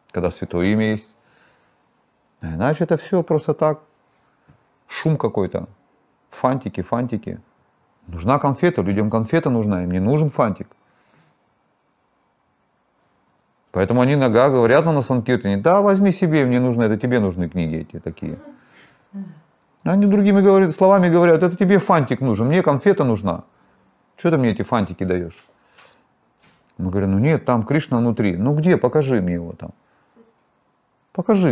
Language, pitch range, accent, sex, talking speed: Russian, 95-155 Hz, native, male, 140 wpm